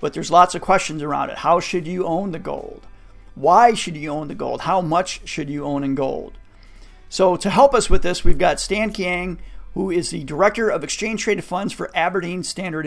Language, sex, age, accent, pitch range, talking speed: English, male, 50-69, American, 145-190 Hz, 220 wpm